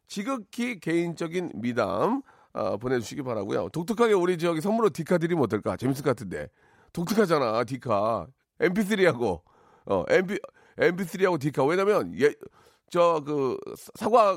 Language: Korean